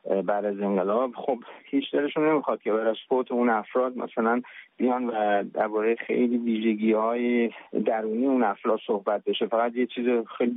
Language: Persian